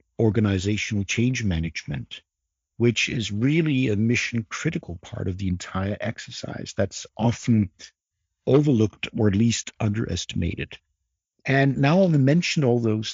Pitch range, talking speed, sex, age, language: 95-120 Hz, 125 wpm, male, 50-69, English